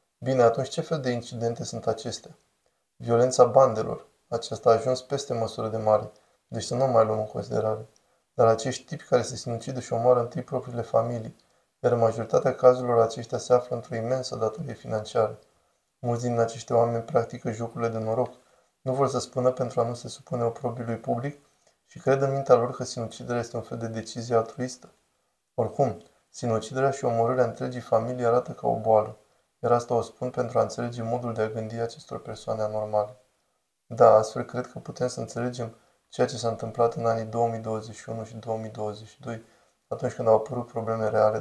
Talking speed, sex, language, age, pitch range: 180 wpm, male, Romanian, 20-39, 115-125 Hz